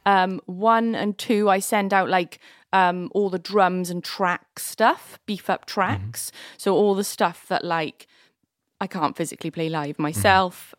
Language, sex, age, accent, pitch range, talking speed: English, female, 20-39, British, 170-200 Hz, 165 wpm